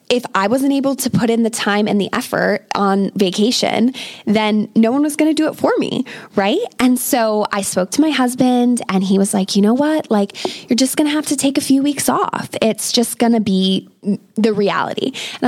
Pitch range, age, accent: 200-245 Hz, 20-39, American